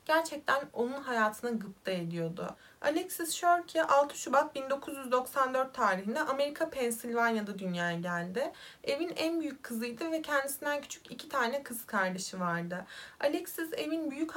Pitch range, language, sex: 220-290 Hz, Turkish, female